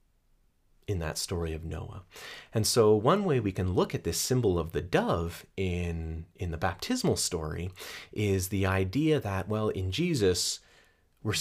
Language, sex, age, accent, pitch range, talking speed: English, male, 30-49, American, 85-105 Hz, 165 wpm